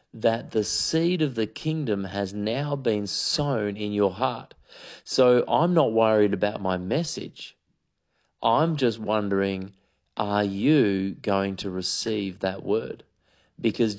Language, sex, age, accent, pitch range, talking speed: English, male, 40-59, Australian, 100-130 Hz, 135 wpm